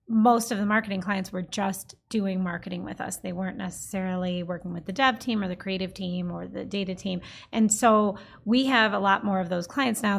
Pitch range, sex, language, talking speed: 190-225 Hz, female, English, 225 wpm